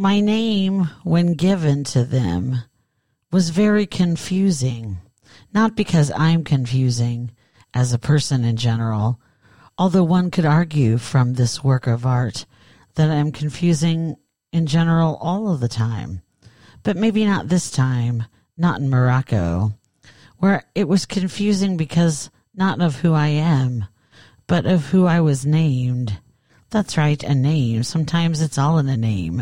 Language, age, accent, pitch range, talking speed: English, 40-59, American, 130-190 Hz, 145 wpm